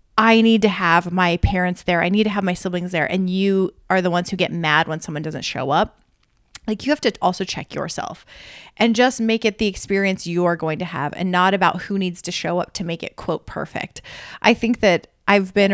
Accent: American